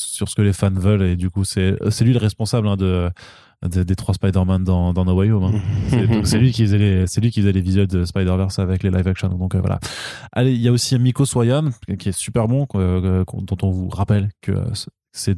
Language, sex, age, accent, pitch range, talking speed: French, male, 20-39, French, 100-125 Hz, 240 wpm